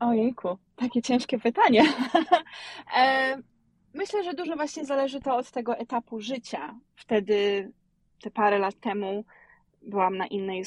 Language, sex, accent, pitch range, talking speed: Polish, female, native, 195-240 Hz, 130 wpm